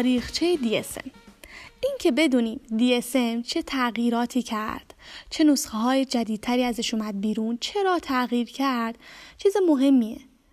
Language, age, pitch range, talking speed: Persian, 10-29, 230-290 Hz, 120 wpm